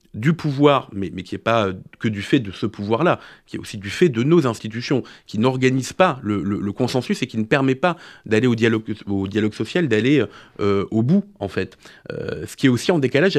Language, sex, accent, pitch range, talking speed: French, male, French, 100-135 Hz, 235 wpm